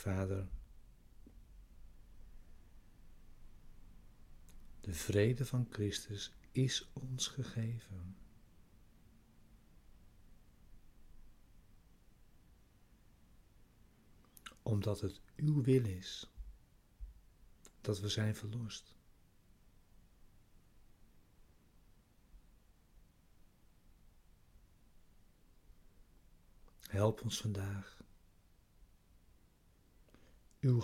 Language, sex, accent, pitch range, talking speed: Dutch, male, Dutch, 85-110 Hz, 40 wpm